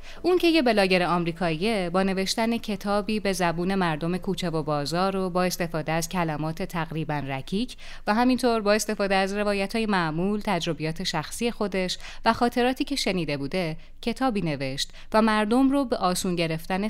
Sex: female